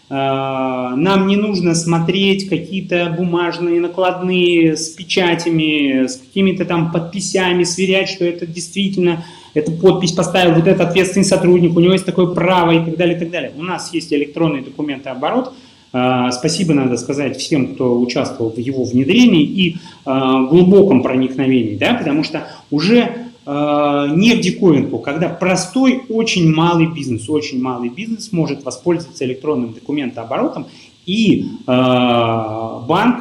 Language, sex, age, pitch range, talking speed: Russian, male, 30-49, 145-195 Hz, 130 wpm